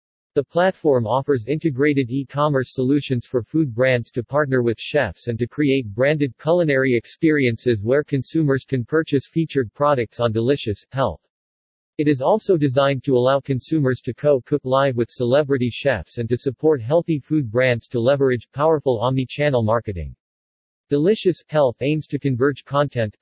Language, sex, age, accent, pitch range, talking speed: English, male, 50-69, American, 120-150 Hz, 150 wpm